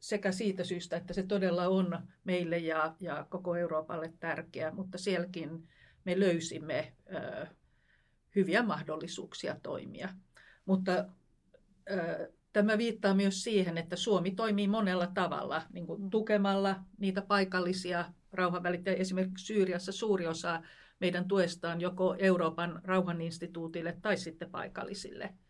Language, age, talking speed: Finnish, 50-69, 120 wpm